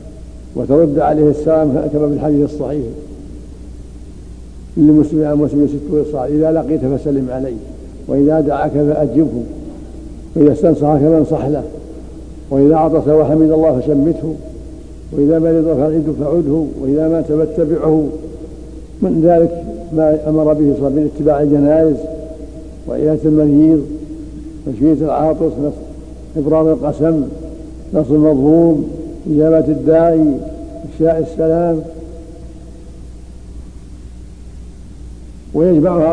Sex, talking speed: male, 95 wpm